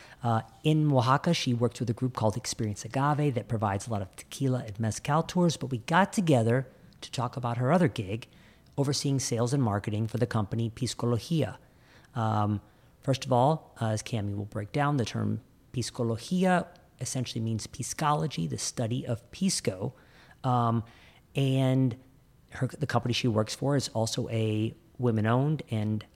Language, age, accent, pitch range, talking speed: English, 40-59, American, 110-135 Hz, 160 wpm